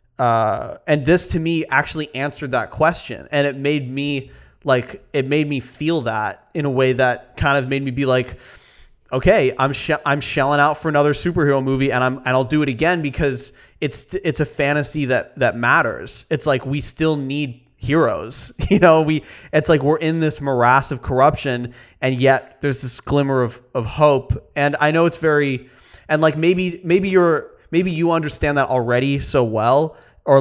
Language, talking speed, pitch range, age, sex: English, 190 wpm, 130-155 Hz, 20-39, male